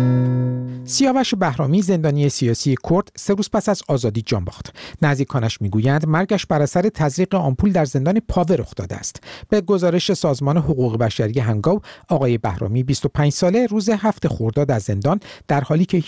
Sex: male